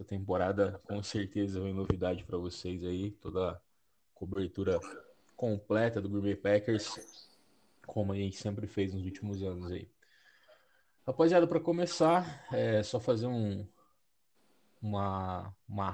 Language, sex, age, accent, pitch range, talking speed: Portuguese, male, 20-39, Brazilian, 95-120 Hz, 125 wpm